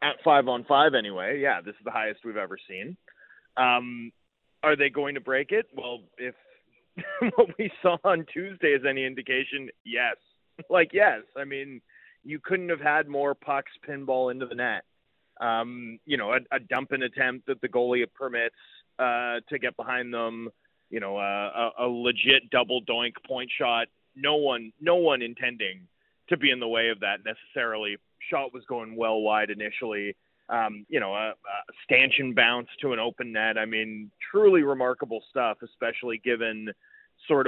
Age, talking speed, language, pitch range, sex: 30-49, 175 wpm, English, 115-140 Hz, male